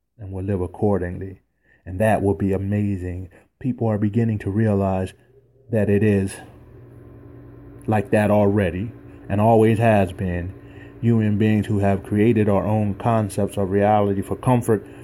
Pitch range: 100-115 Hz